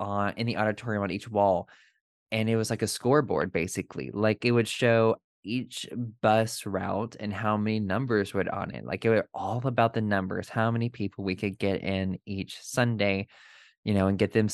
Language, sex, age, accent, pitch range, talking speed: English, male, 20-39, American, 95-110 Hz, 200 wpm